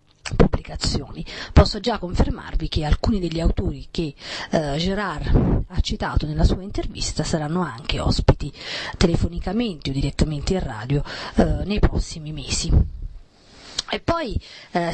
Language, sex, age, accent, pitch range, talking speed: English, female, 30-49, Italian, 150-190 Hz, 125 wpm